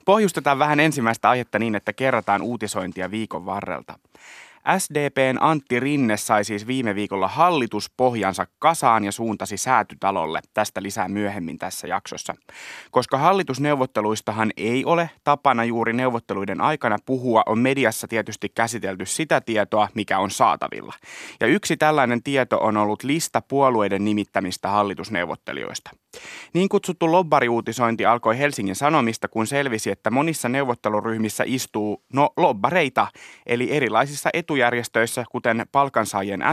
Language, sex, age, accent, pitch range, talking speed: Finnish, male, 30-49, native, 105-135 Hz, 120 wpm